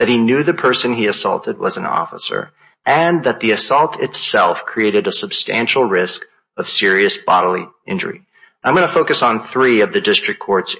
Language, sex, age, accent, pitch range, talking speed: English, male, 30-49, American, 115-160 Hz, 185 wpm